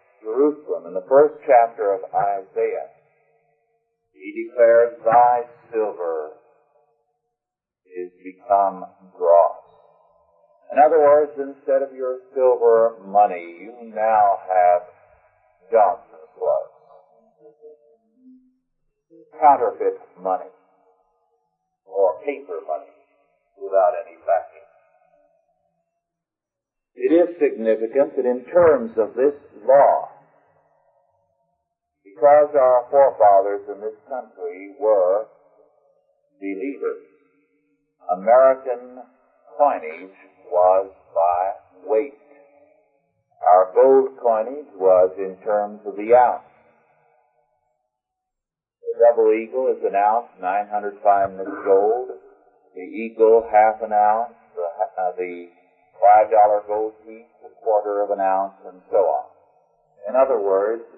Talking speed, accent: 95 wpm, American